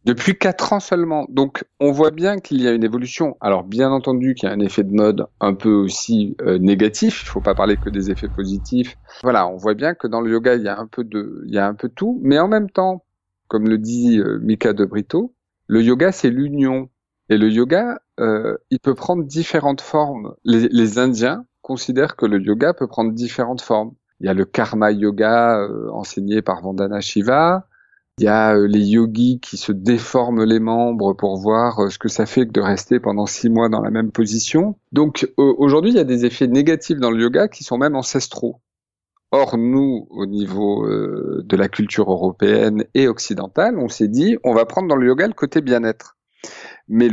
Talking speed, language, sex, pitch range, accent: 215 wpm, French, male, 105-135 Hz, French